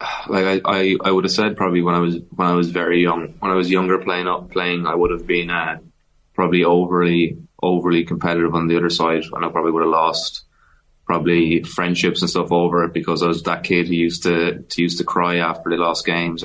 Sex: male